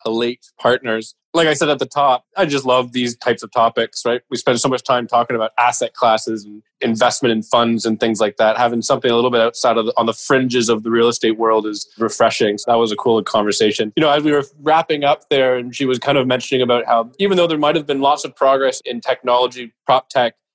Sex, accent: male, American